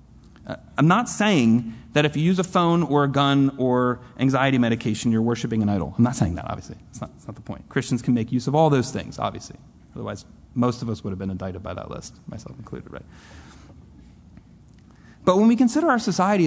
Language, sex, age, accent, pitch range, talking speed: English, male, 30-49, American, 115-180 Hz, 210 wpm